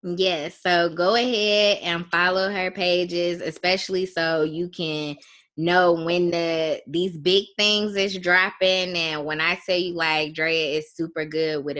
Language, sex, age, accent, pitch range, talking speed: English, female, 20-39, American, 155-180 Hz, 160 wpm